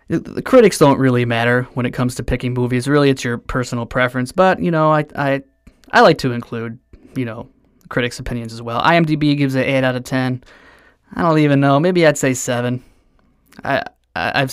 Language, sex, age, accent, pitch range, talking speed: English, male, 20-39, American, 125-155 Hz, 200 wpm